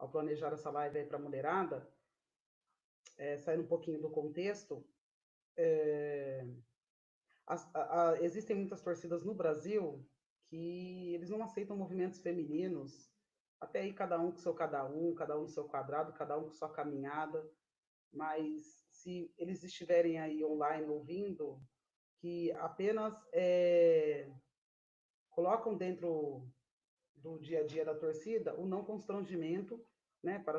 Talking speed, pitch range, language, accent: 135 wpm, 150-185 Hz, Portuguese, Brazilian